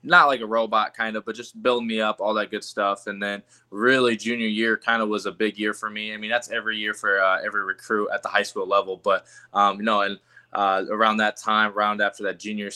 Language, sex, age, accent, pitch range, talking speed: English, male, 20-39, American, 95-110 Hz, 260 wpm